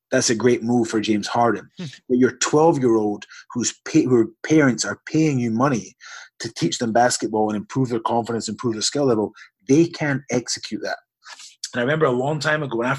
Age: 30-49